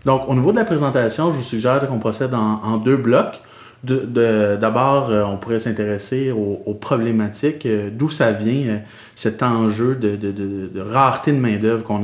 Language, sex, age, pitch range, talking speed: French, male, 30-49, 105-130 Hz, 200 wpm